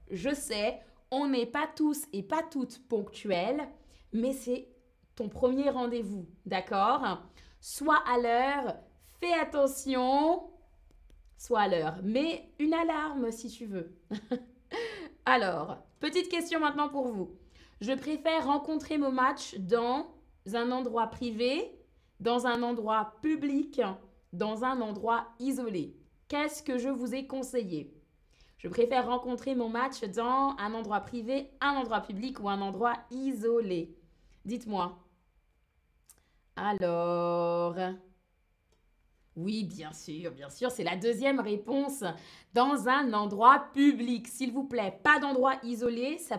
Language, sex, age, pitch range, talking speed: French, female, 20-39, 205-280 Hz, 125 wpm